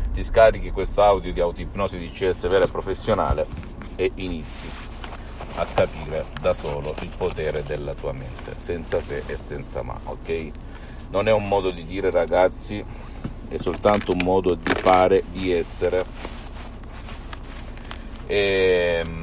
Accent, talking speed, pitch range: native, 135 wpm, 90-110 Hz